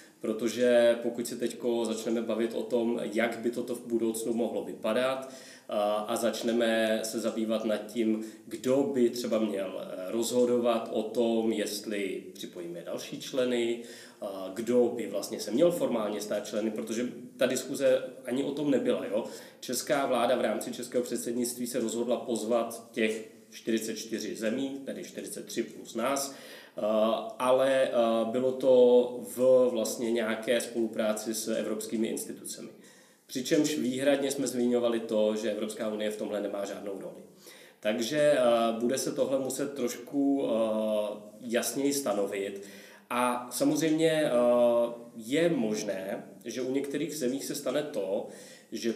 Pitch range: 110-130 Hz